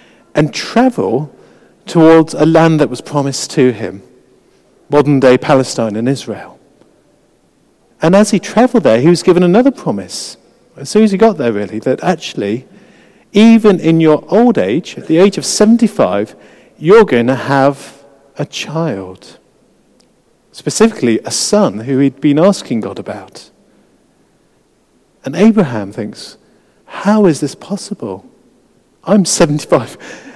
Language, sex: English, male